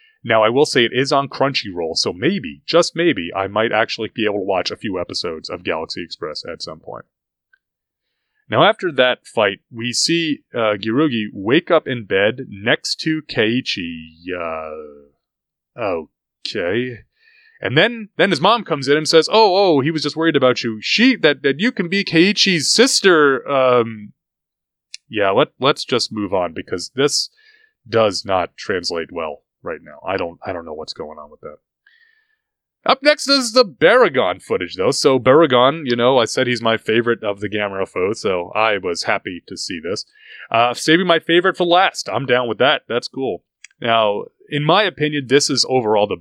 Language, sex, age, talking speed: English, male, 30-49, 185 wpm